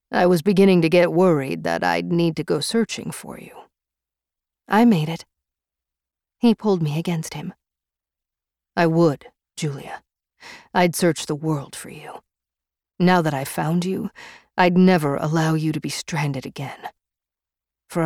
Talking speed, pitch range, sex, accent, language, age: 150 wpm, 145-195 Hz, female, American, English, 40-59